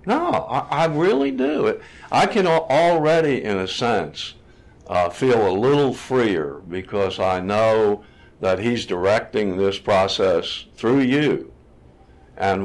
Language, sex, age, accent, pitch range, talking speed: English, male, 60-79, American, 95-125 Hz, 125 wpm